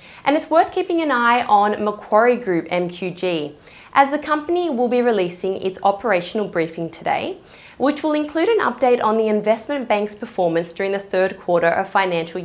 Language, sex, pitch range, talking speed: English, female, 175-245 Hz, 175 wpm